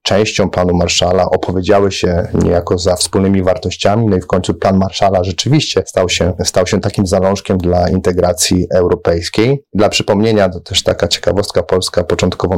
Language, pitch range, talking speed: Polish, 90-105 Hz, 155 wpm